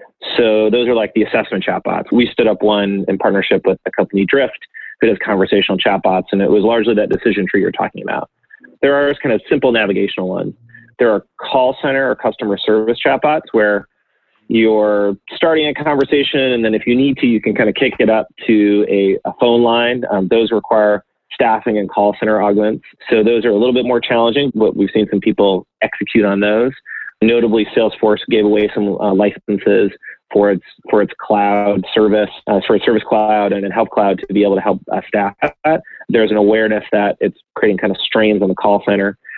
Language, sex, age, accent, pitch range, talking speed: English, male, 30-49, American, 105-120 Hz, 205 wpm